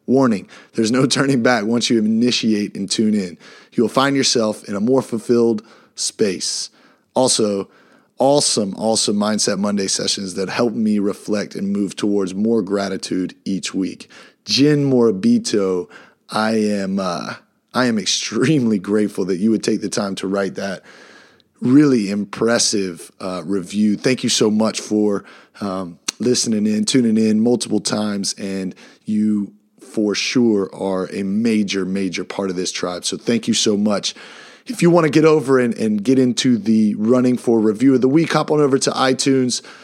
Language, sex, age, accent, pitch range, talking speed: English, male, 30-49, American, 100-125 Hz, 160 wpm